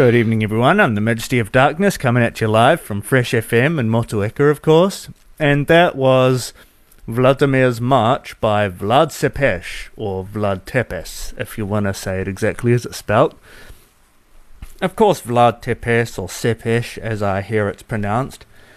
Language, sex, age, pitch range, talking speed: English, male, 30-49, 100-120 Hz, 160 wpm